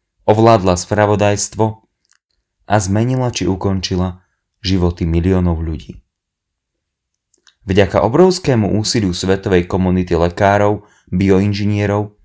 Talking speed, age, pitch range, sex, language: 80 wpm, 30-49, 90-110 Hz, male, Slovak